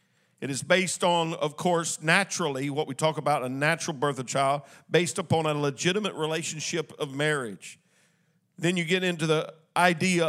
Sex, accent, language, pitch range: male, American, English, 155-190 Hz